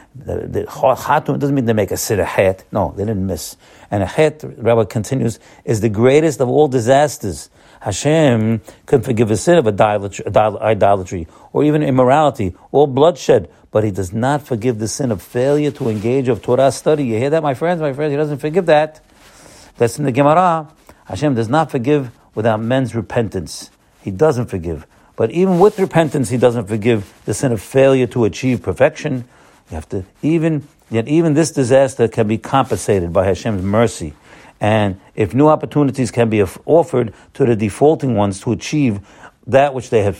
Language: English